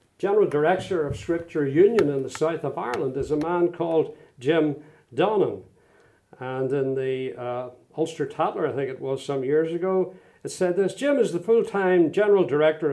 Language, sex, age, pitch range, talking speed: English, male, 50-69, 135-175 Hz, 175 wpm